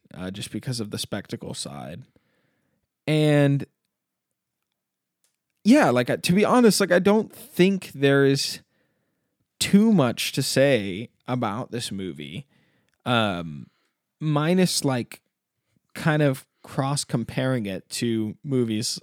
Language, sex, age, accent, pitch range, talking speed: English, male, 20-39, American, 110-140 Hz, 115 wpm